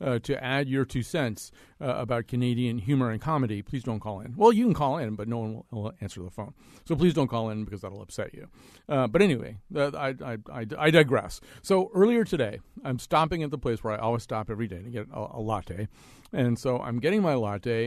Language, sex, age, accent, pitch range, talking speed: English, male, 50-69, American, 115-145 Hz, 230 wpm